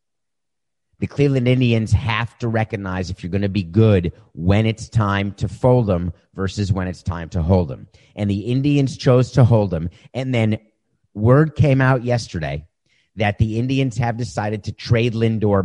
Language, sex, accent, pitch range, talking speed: English, male, American, 95-115 Hz, 175 wpm